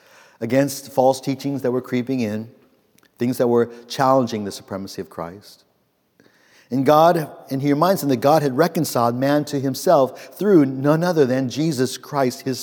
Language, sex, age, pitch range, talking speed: English, male, 50-69, 110-135 Hz, 165 wpm